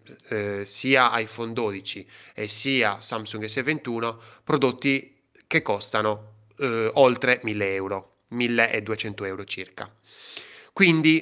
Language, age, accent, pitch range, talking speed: Italian, 20-39, native, 105-140 Hz, 100 wpm